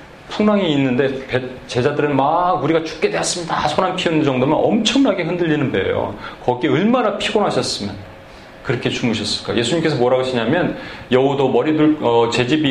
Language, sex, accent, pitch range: Korean, male, native, 130-185 Hz